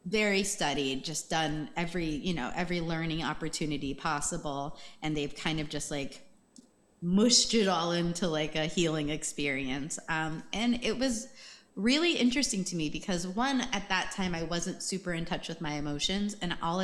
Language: English